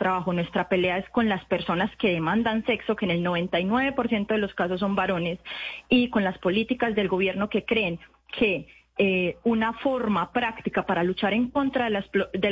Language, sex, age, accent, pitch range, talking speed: Spanish, female, 20-39, Colombian, 190-225 Hz, 180 wpm